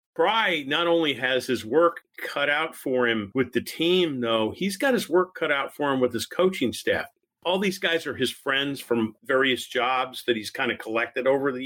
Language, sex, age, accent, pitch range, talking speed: English, male, 50-69, American, 125-155 Hz, 215 wpm